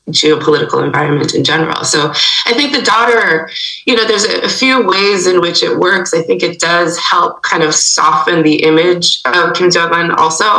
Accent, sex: American, female